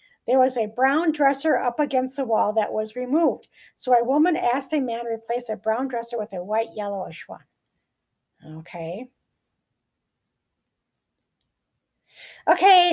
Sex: female